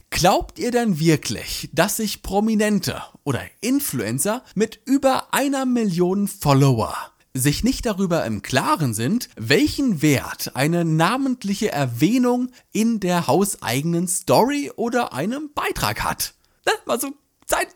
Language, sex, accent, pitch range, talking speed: German, male, German, 160-250 Hz, 120 wpm